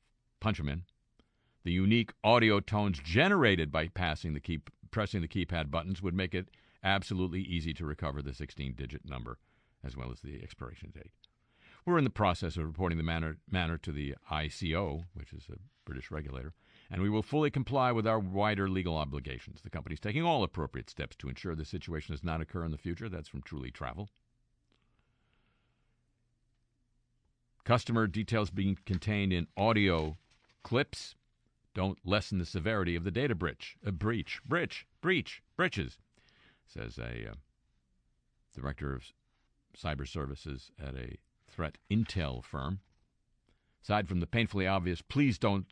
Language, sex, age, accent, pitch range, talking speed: English, male, 50-69, American, 80-110 Hz, 155 wpm